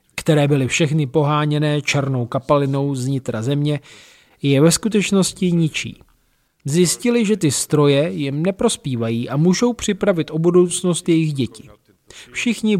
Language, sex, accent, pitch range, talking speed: Czech, male, native, 130-165 Hz, 125 wpm